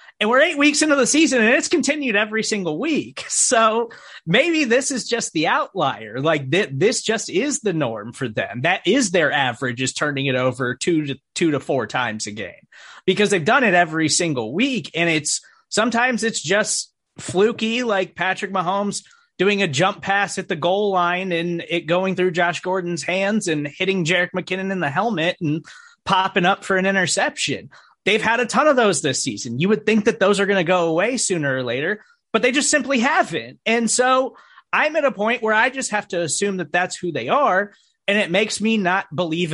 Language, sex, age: English, male, 30-49